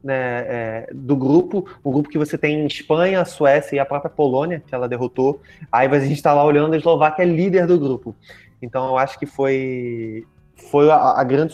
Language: Portuguese